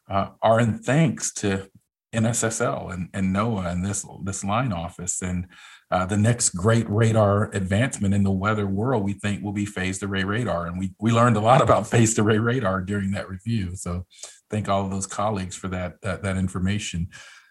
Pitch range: 100-125 Hz